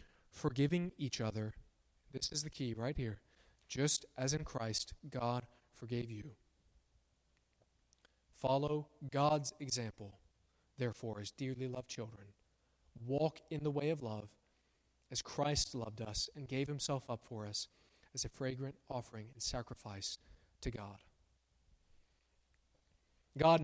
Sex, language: male, English